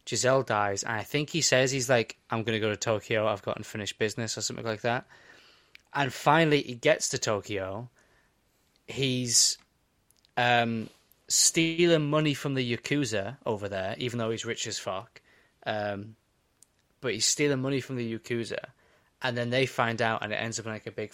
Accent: British